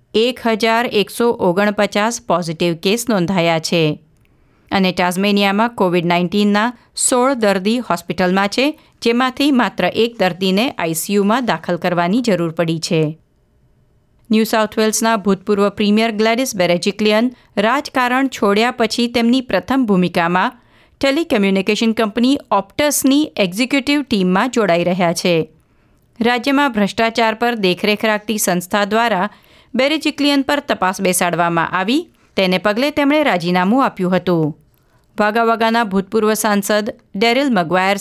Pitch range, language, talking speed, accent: 185-240 Hz, Gujarati, 105 wpm, native